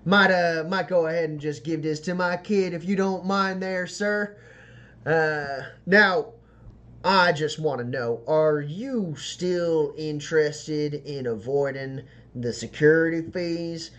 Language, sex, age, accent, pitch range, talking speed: English, male, 20-39, American, 120-185 Hz, 145 wpm